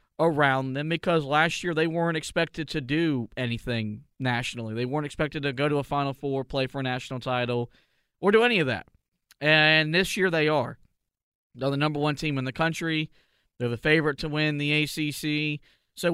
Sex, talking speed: male, 195 wpm